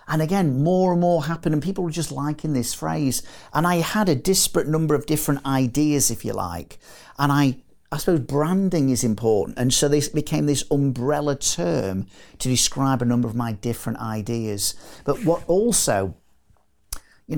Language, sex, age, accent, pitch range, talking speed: English, male, 40-59, British, 110-150 Hz, 175 wpm